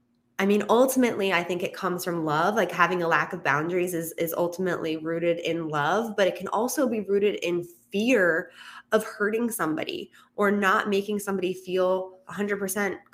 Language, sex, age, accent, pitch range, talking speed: English, female, 20-39, American, 170-215 Hz, 175 wpm